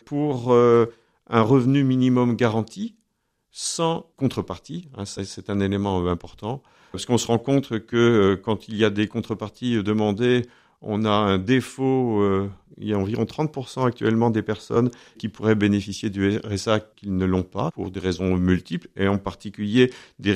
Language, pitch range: French, 95-120 Hz